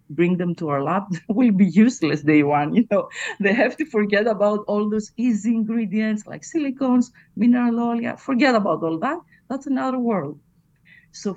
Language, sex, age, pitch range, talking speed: English, female, 50-69, 155-190 Hz, 175 wpm